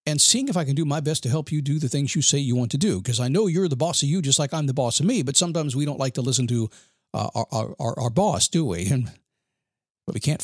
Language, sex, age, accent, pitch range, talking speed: English, male, 50-69, American, 120-155 Hz, 310 wpm